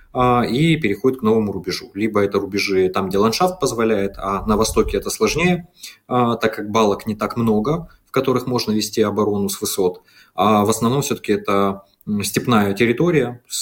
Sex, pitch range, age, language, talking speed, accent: male, 100-125 Hz, 20-39, Russian, 165 wpm, native